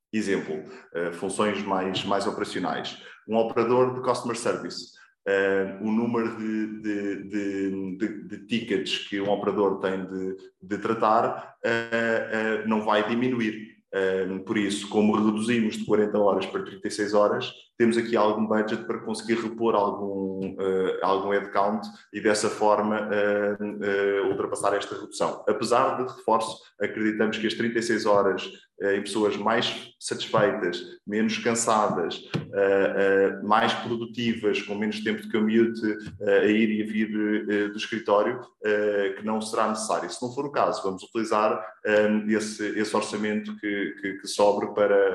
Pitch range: 100-110 Hz